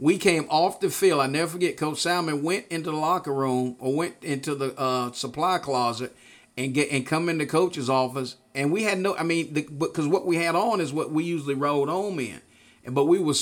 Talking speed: 240 wpm